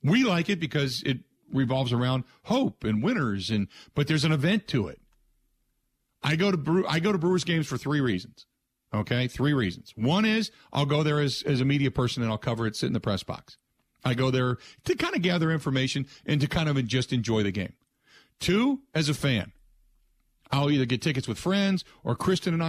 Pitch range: 125-175 Hz